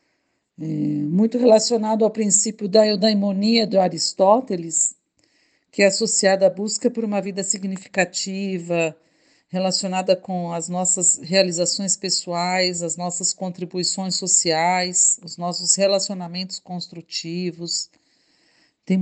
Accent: Brazilian